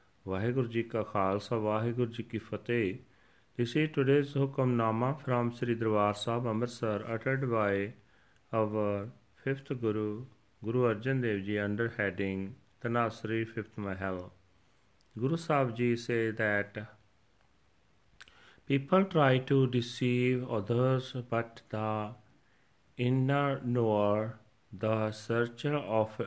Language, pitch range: Punjabi, 105-130 Hz